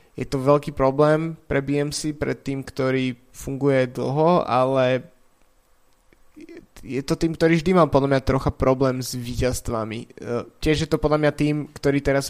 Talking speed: 155 wpm